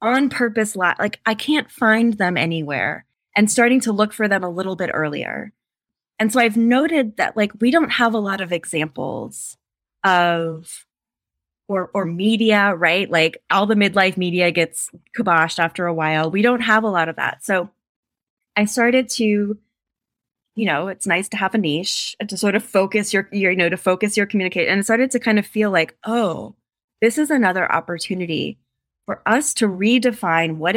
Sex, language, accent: female, English, American